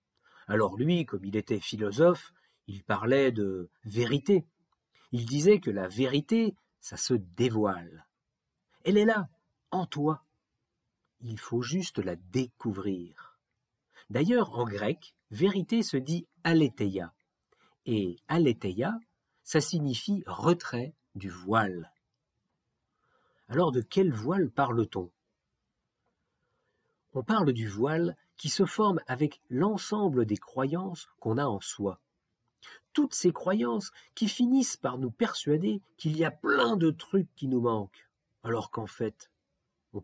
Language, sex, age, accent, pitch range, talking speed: French, male, 50-69, French, 110-185 Hz, 125 wpm